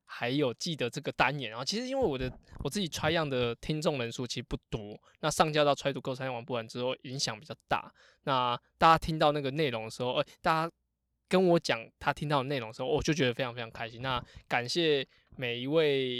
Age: 20-39